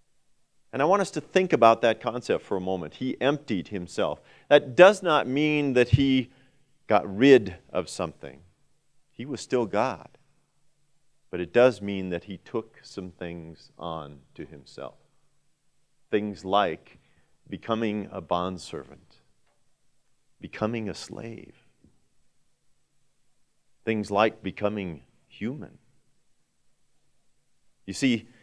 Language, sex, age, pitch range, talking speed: English, male, 40-59, 95-130 Hz, 115 wpm